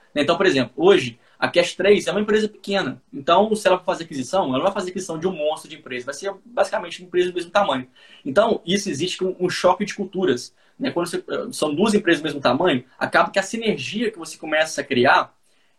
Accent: Brazilian